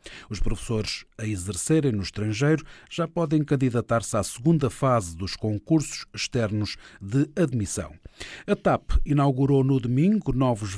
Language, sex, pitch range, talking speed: Portuguese, male, 105-145 Hz, 130 wpm